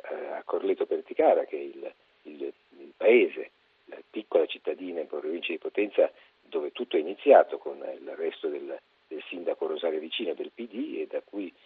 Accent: native